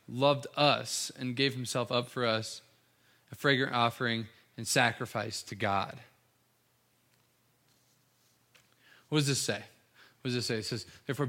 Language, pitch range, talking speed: English, 125-175 Hz, 140 wpm